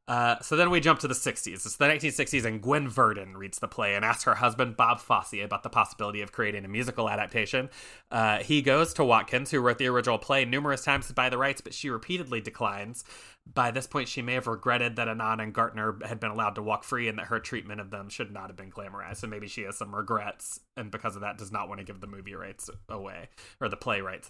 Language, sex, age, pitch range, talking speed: English, male, 20-39, 105-125 Hz, 250 wpm